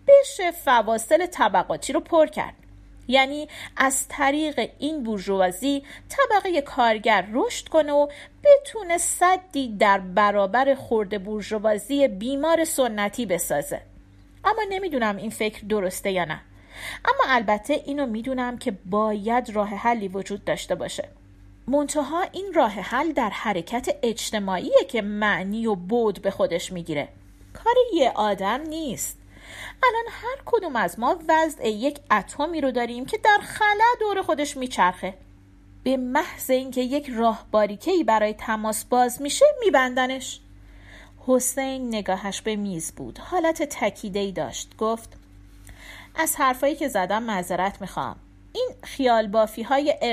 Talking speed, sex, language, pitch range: 125 wpm, female, Persian, 195-290 Hz